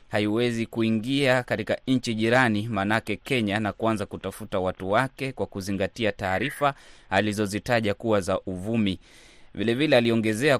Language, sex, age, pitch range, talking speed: Swahili, male, 30-49, 105-140 Hz, 125 wpm